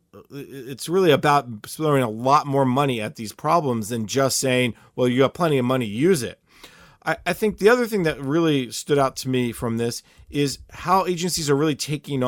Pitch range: 125-150 Hz